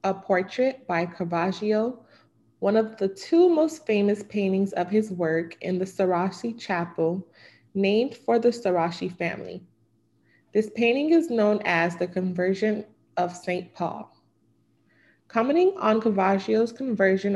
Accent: American